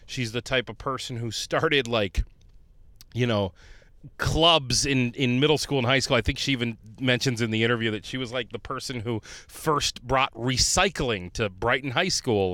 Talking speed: 190 wpm